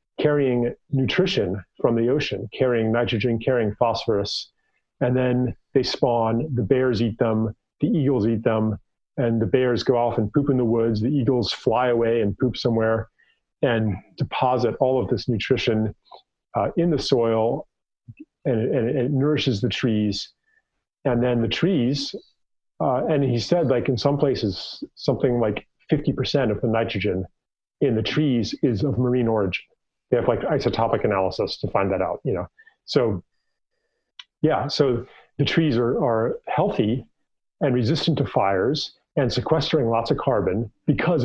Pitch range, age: 115-145 Hz, 40-59